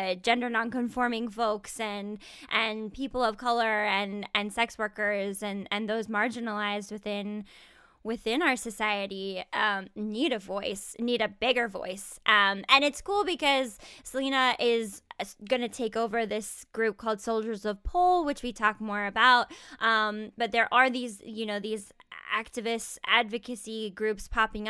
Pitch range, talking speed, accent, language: 210-245 Hz, 150 wpm, American, English